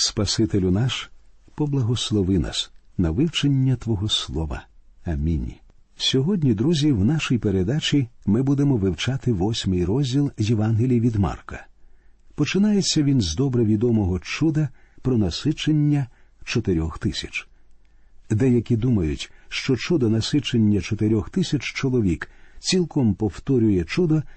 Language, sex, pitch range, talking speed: Ukrainian, male, 105-150 Hz, 105 wpm